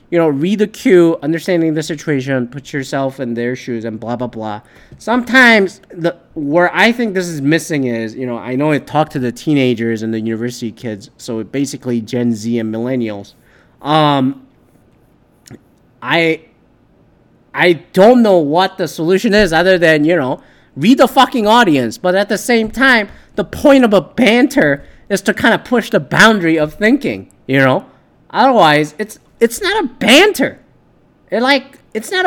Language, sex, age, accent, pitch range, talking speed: English, male, 30-49, American, 140-225 Hz, 175 wpm